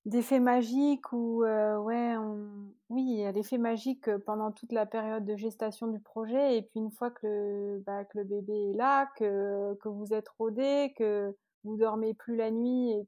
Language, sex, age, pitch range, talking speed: French, female, 30-49, 200-235 Hz, 205 wpm